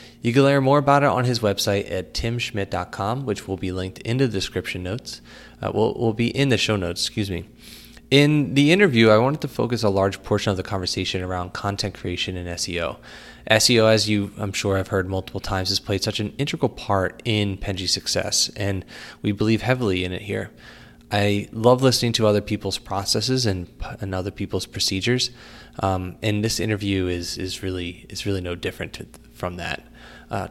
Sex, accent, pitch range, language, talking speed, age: male, American, 95-115 Hz, English, 195 wpm, 20-39